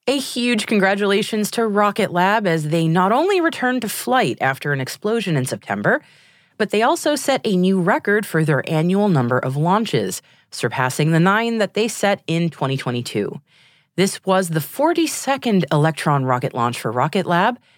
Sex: female